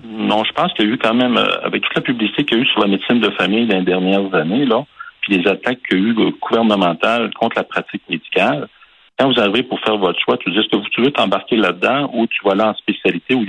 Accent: French